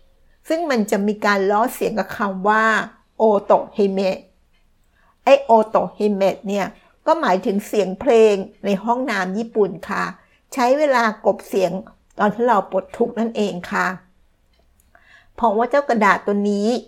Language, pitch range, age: Thai, 195-235 Hz, 60-79